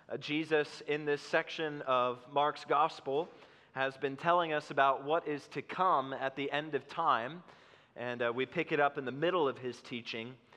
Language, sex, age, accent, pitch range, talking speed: English, male, 30-49, American, 125-155 Hz, 185 wpm